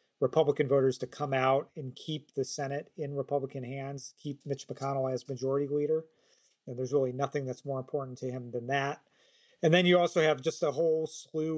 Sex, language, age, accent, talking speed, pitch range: male, English, 40-59, American, 195 wpm, 130-150 Hz